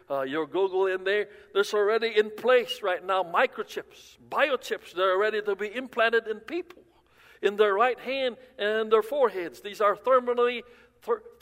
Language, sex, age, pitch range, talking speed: English, male, 60-79, 185-255 Hz, 170 wpm